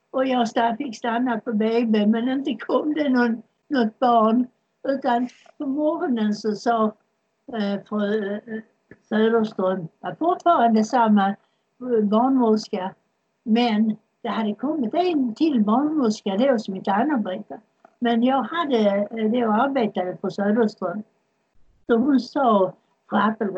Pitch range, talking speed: 205-250 Hz, 125 wpm